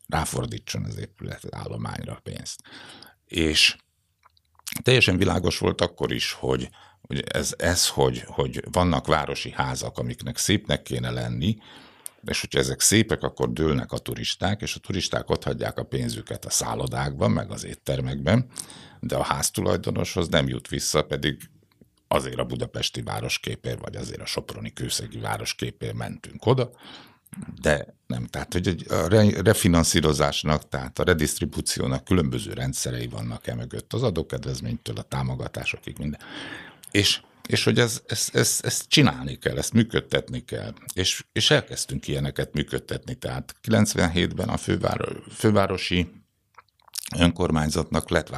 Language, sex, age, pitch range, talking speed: Hungarian, male, 60-79, 65-100 Hz, 125 wpm